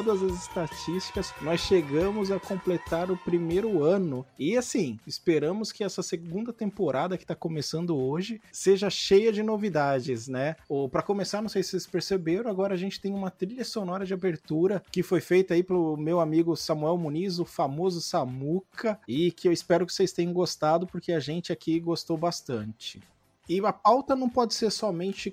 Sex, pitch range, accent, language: male, 160-195 Hz, Brazilian, Portuguese